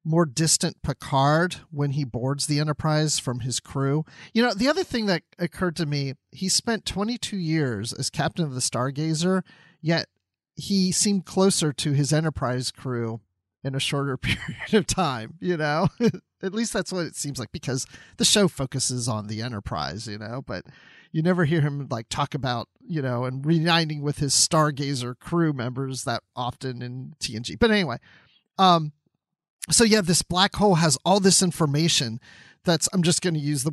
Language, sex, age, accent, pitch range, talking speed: English, male, 40-59, American, 135-175 Hz, 180 wpm